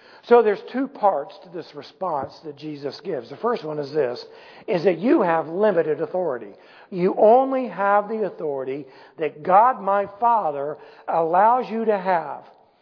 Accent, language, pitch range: American, English, 160-235 Hz